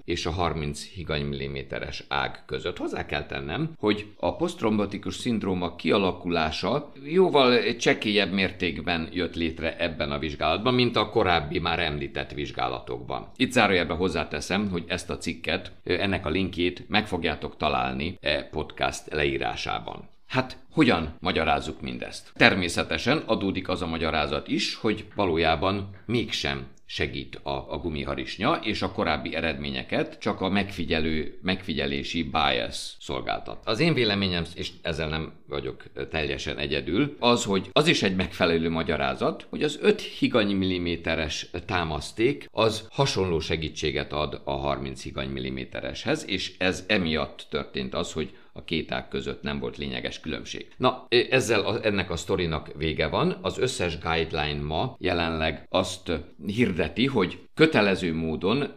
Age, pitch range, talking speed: 50-69, 75-95 Hz, 135 wpm